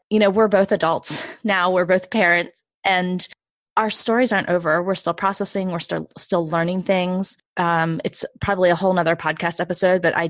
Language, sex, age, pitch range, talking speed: English, female, 20-39, 170-200 Hz, 185 wpm